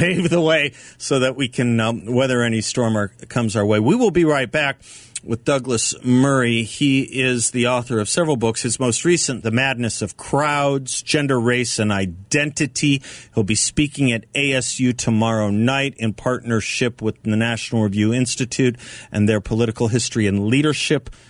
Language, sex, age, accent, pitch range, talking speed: English, male, 40-59, American, 110-130 Hz, 170 wpm